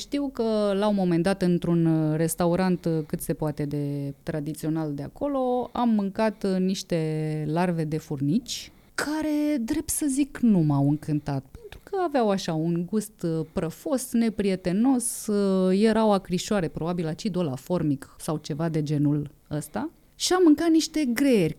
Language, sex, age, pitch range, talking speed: English, female, 30-49, 155-210 Hz, 145 wpm